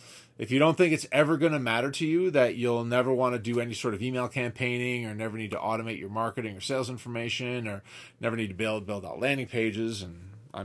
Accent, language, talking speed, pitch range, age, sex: American, English, 240 wpm, 110-140 Hz, 30-49, male